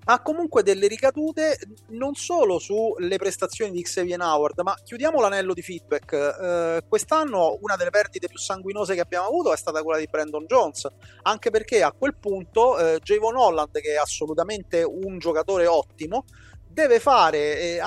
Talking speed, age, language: 160 wpm, 30-49, Italian